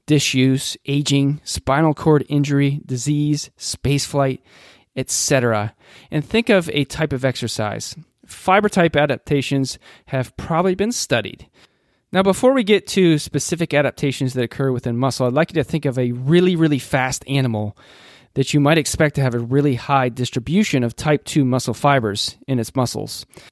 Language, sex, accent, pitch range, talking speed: English, male, American, 125-150 Hz, 160 wpm